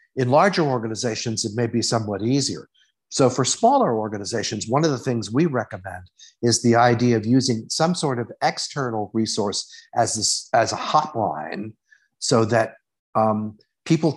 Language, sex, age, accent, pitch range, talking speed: English, male, 50-69, American, 110-150 Hz, 155 wpm